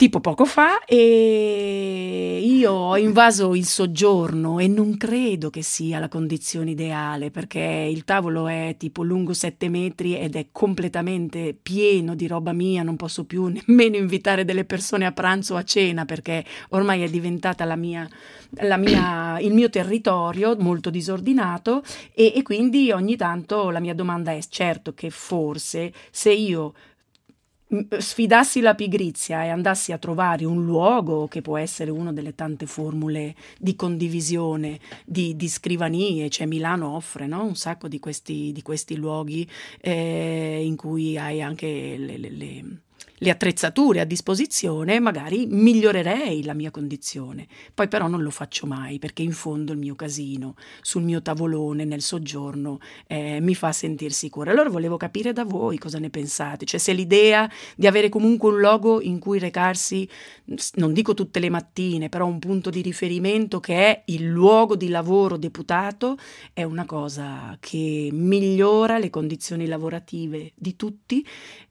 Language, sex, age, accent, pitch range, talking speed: Italian, female, 40-59, native, 155-200 Hz, 155 wpm